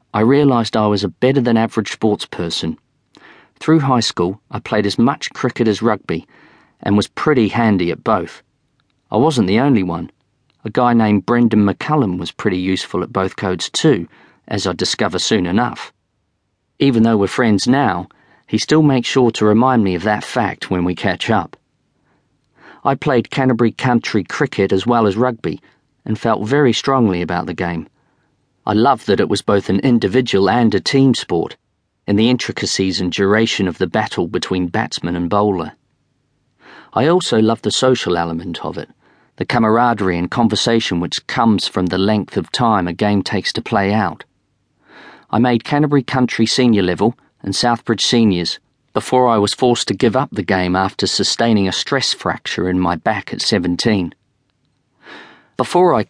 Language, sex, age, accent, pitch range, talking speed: English, male, 40-59, British, 95-120 Hz, 170 wpm